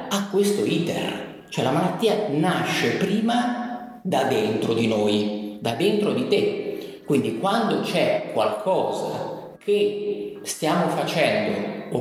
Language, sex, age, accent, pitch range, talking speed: Italian, male, 50-69, native, 135-210 Hz, 120 wpm